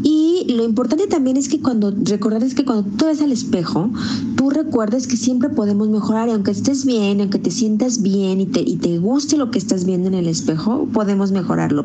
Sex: female